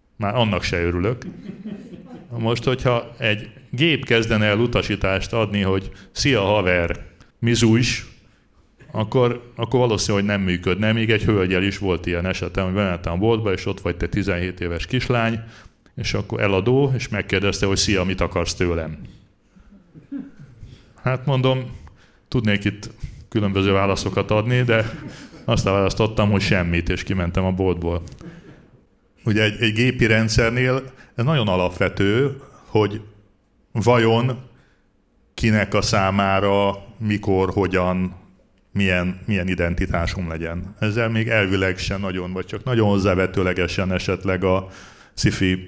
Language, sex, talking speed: Hungarian, male, 125 wpm